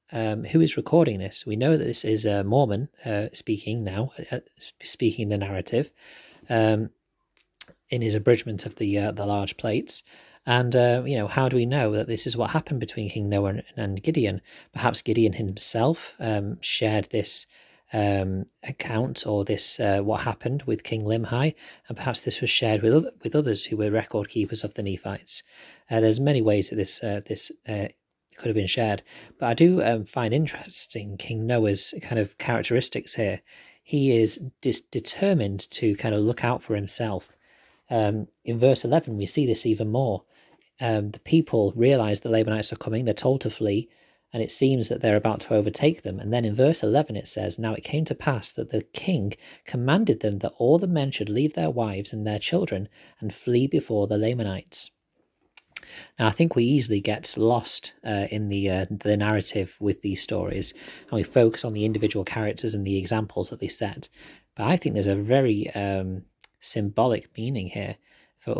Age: 30-49